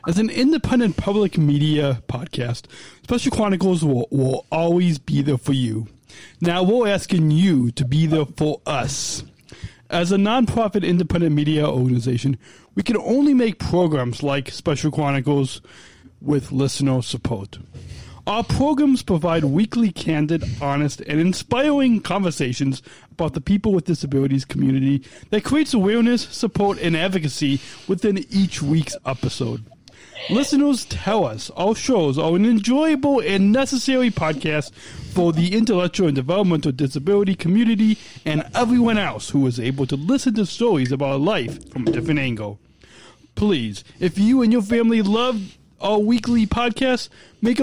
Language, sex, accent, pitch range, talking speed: English, male, American, 140-225 Hz, 140 wpm